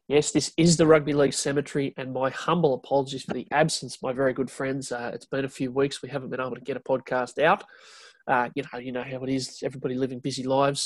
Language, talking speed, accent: English, 245 wpm, Australian